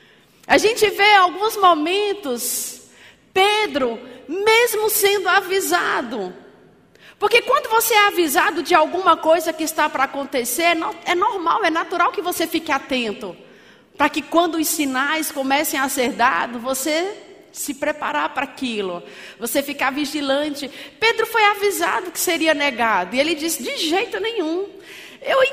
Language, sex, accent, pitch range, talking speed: Portuguese, female, Brazilian, 280-365 Hz, 140 wpm